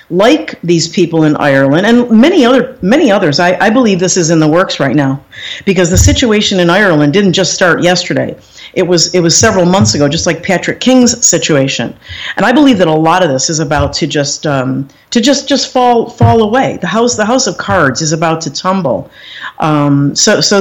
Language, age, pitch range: English, 50-69, 155-200 Hz